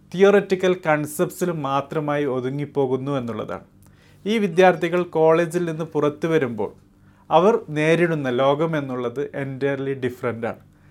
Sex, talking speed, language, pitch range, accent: male, 90 wpm, Malayalam, 135-185 Hz, native